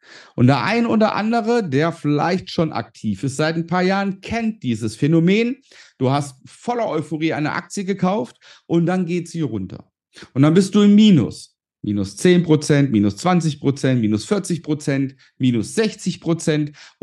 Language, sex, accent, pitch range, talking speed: German, male, German, 140-200 Hz, 150 wpm